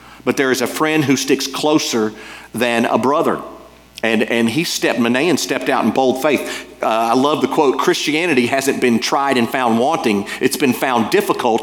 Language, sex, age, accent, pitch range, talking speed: English, male, 50-69, American, 105-140 Hz, 190 wpm